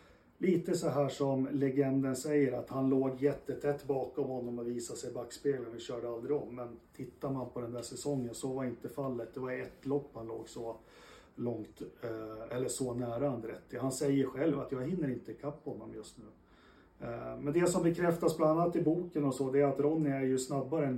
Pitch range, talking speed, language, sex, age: 120-145 Hz, 205 wpm, Swedish, male, 30-49